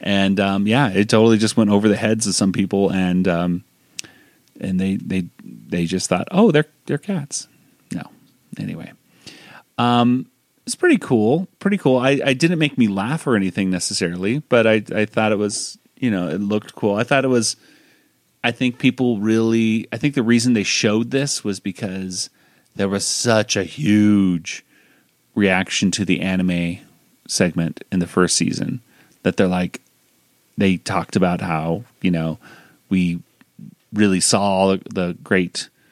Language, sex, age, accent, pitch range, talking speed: English, male, 30-49, American, 95-125 Hz, 165 wpm